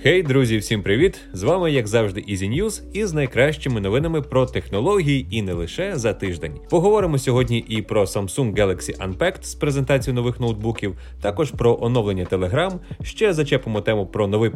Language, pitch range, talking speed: Ukrainian, 105-155 Hz, 165 wpm